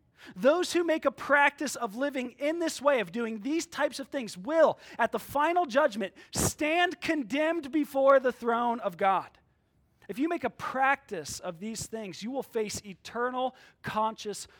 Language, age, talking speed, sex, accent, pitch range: English, 30-49, 170 wpm, male, American, 160-240 Hz